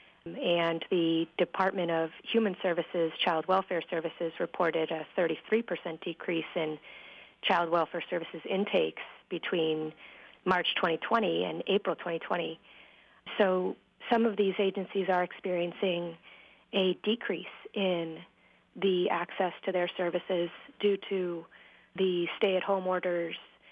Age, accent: 30-49, American